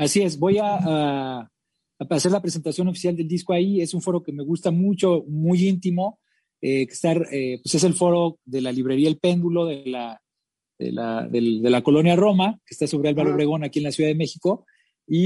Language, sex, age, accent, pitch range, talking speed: English, male, 40-59, Mexican, 150-180 Hz, 215 wpm